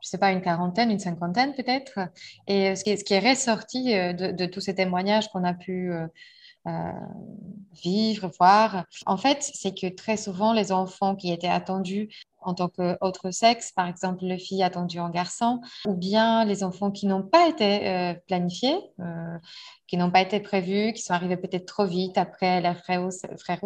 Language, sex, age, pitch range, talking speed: French, female, 20-39, 190-230 Hz, 185 wpm